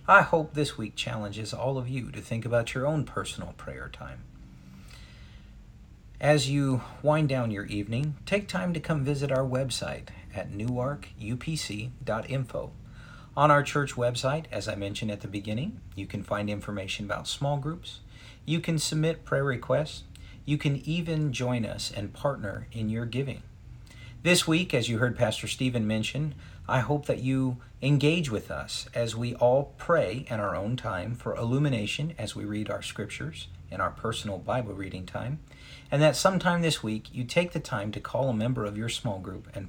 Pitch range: 105-140 Hz